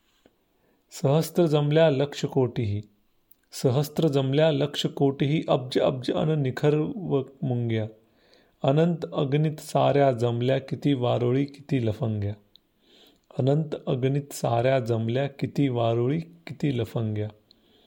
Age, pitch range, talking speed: 30-49, 120-145 Hz, 90 wpm